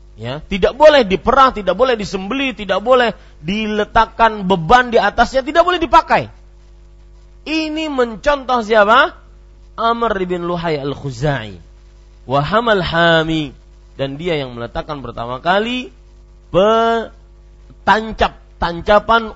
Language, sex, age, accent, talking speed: German, male, 40-59, Indonesian, 100 wpm